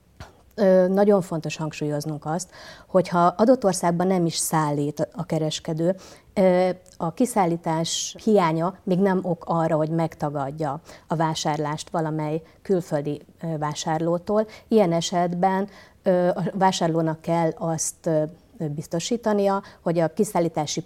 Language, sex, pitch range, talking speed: Hungarian, female, 155-185 Hz, 105 wpm